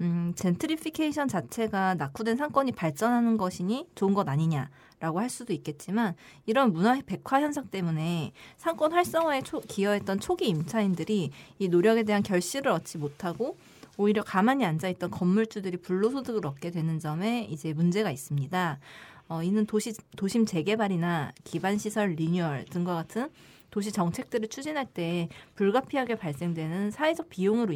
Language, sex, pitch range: Korean, female, 160-225 Hz